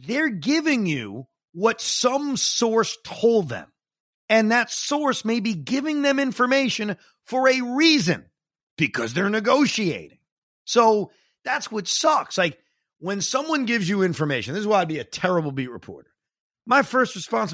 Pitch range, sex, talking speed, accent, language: 175-245 Hz, male, 150 wpm, American, English